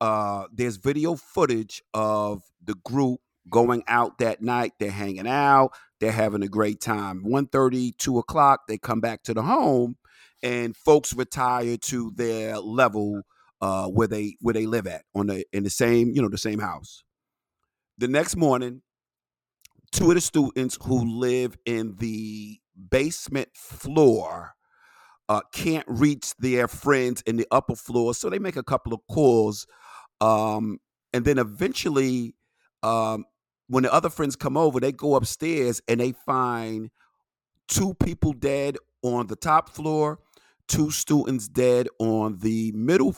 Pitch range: 110-135 Hz